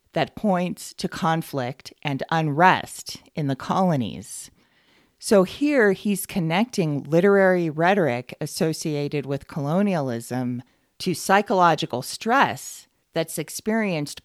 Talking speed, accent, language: 95 wpm, American, English